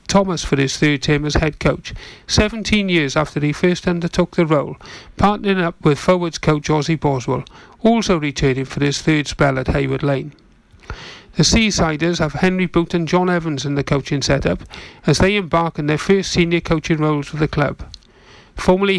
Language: English